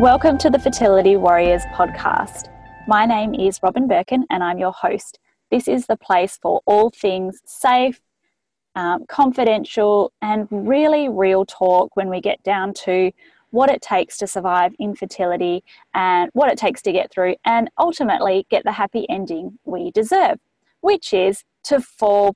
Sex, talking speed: female, 160 wpm